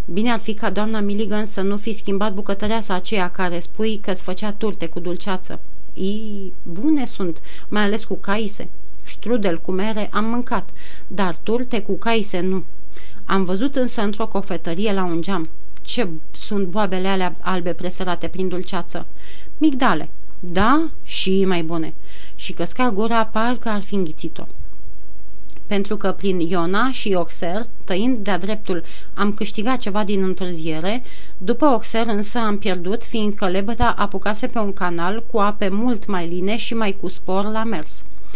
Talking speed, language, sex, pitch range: 155 wpm, Romanian, female, 185-225 Hz